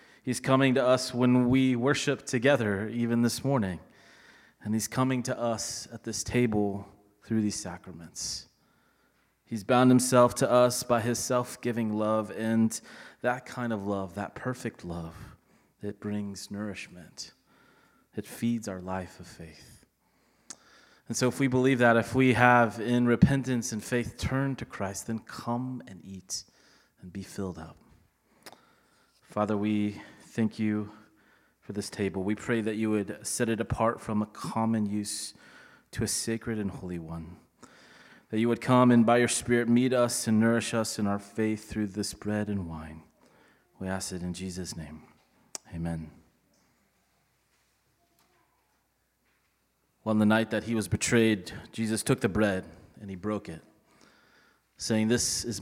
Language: English